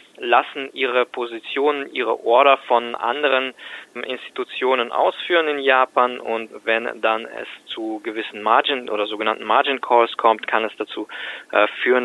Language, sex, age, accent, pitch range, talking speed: German, male, 20-39, German, 110-135 Hz, 140 wpm